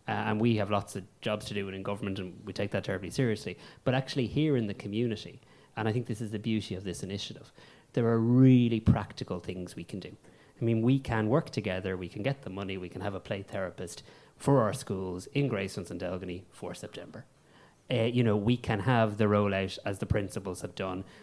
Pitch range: 100-120 Hz